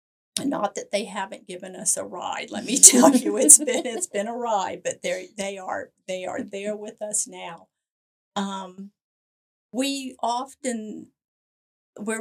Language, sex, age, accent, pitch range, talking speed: English, female, 50-69, American, 185-230 Hz, 155 wpm